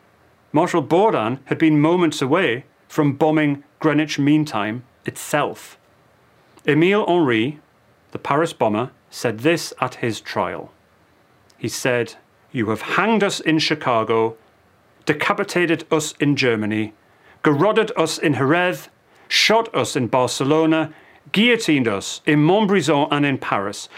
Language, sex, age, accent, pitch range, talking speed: English, male, 40-59, British, 125-170 Hz, 125 wpm